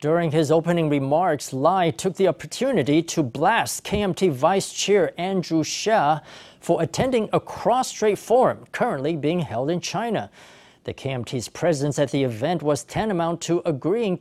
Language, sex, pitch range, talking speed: English, male, 145-180 Hz, 150 wpm